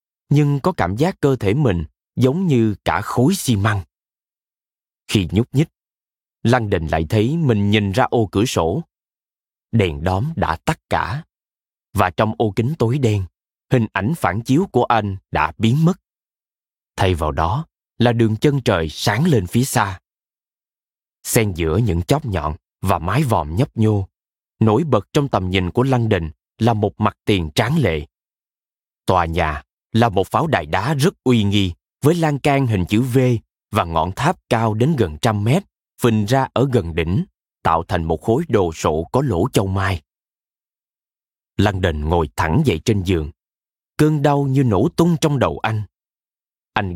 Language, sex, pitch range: Vietnamese, male, 95-130 Hz